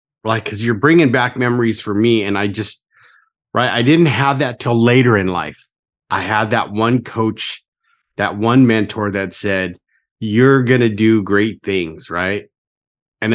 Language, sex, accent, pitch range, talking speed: English, male, American, 105-135 Hz, 170 wpm